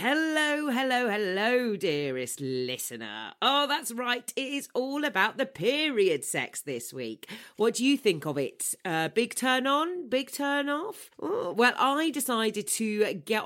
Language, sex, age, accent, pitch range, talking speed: English, female, 40-59, British, 160-255 Hz, 155 wpm